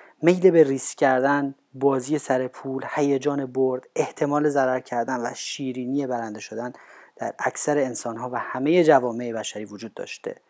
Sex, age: male, 30-49